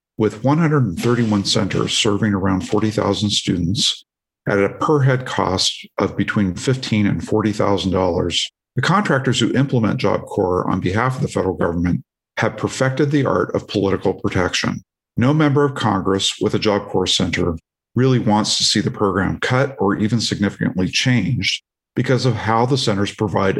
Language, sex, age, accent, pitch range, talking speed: English, male, 50-69, American, 100-125 Hz, 160 wpm